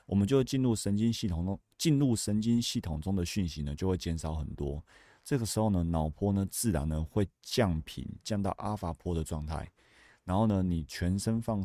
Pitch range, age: 80-110 Hz, 30-49